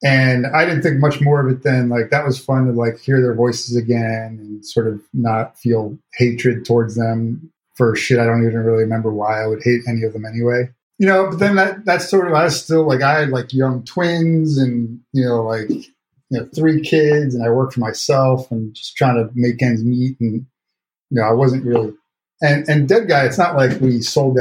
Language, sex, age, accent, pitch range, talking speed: English, male, 30-49, American, 115-140 Hz, 230 wpm